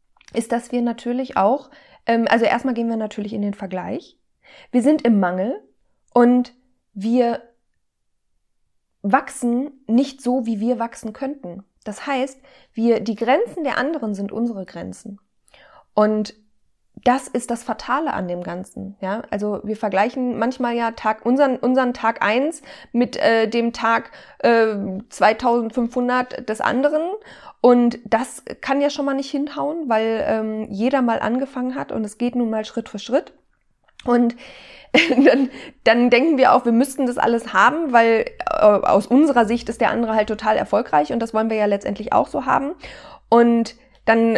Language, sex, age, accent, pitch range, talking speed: German, female, 20-39, German, 220-270 Hz, 160 wpm